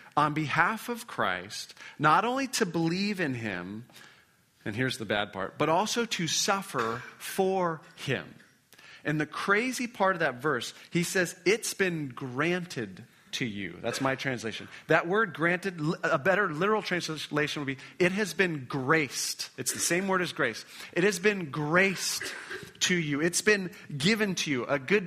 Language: English